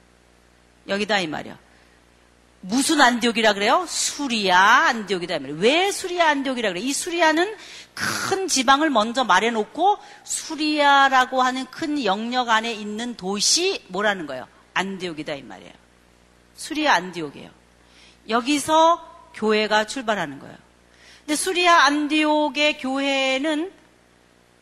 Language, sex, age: Korean, female, 40-59